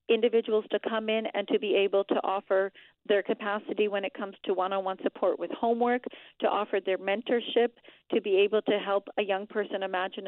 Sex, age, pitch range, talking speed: female, 40-59, 190-225 Hz, 195 wpm